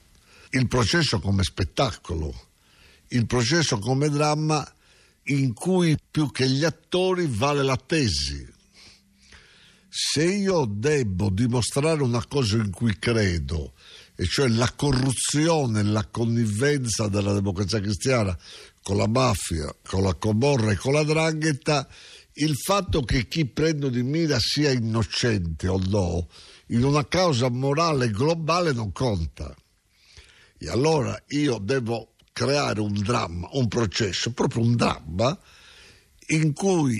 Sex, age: male, 60-79